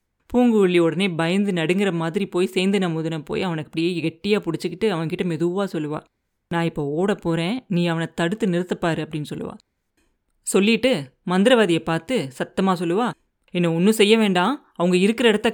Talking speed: 145 wpm